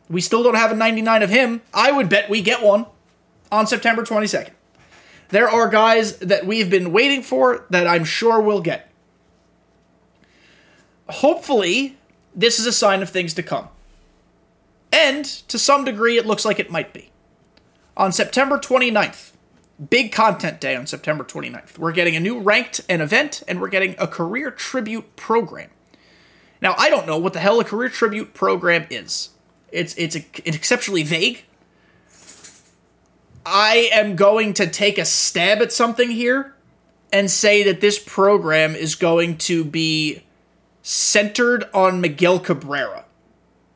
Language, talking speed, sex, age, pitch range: English, 155 wpm, male, 30-49, 180-235 Hz